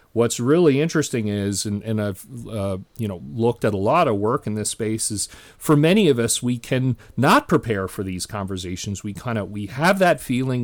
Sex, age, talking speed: male, 40-59, 205 wpm